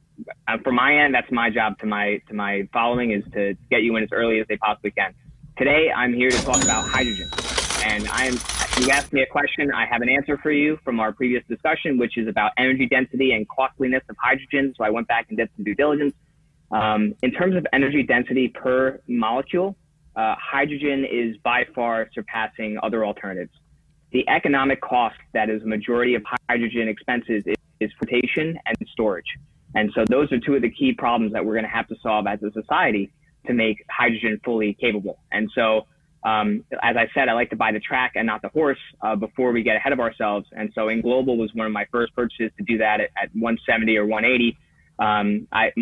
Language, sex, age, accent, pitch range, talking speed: English, male, 30-49, American, 110-130 Hz, 215 wpm